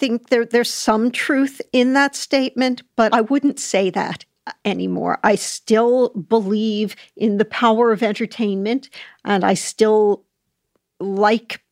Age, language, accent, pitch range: 50-69, English, American, 195-230 Hz